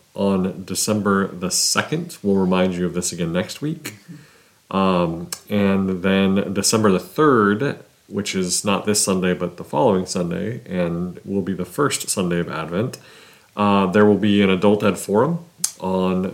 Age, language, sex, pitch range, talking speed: 30-49, English, male, 90-110 Hz, 160 wpm